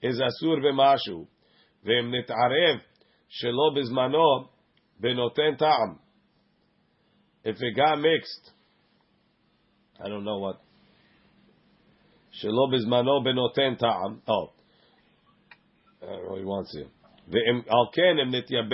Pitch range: 120-150 Hz